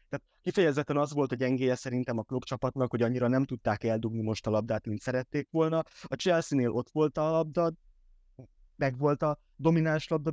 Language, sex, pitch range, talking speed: Hungarian, male, 115-145 Hz, 180 wpm